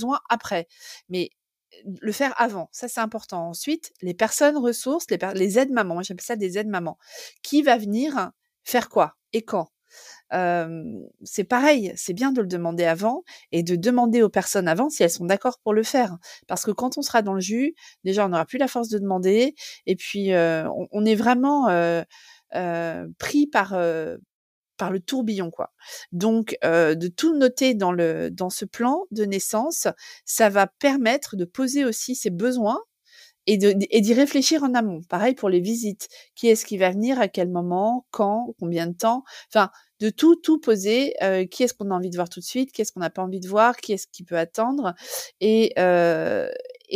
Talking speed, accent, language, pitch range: 205 wpm, French, French, 185-255 Hz